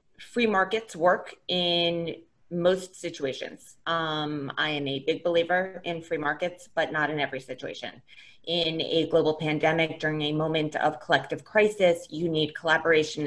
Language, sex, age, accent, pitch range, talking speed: English, female, 20-39, American, 155-175 Hz, 150 wpm